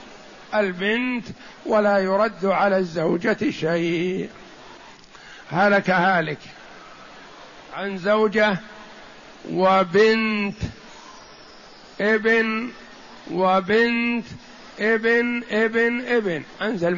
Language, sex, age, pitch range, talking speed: Arabic, male, 60-79, 190-230 Hz, 60 wpm